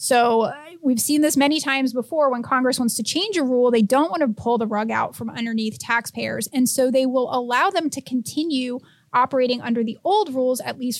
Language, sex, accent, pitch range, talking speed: English, female, American, 230-265 Hz, 220 wpm